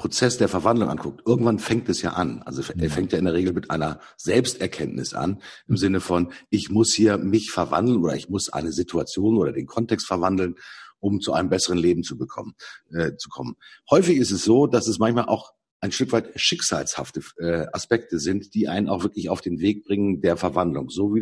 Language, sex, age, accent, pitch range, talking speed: German, male, 50-69, German, 95-125 Hz, 210 wpm